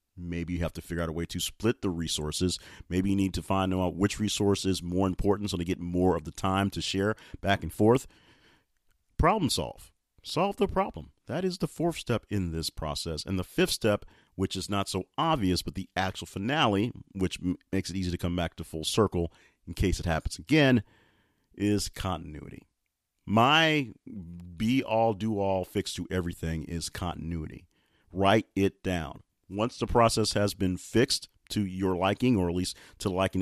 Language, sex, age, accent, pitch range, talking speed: English, male, 40-59, American, 90-115 Hz, 185 wpm